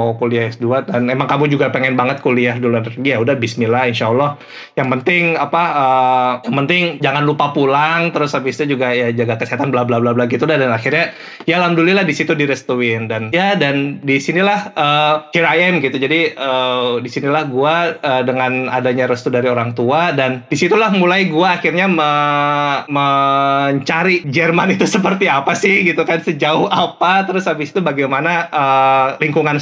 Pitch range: 125-160 Hz